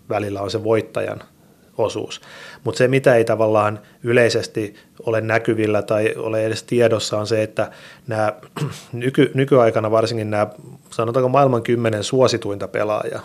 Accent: native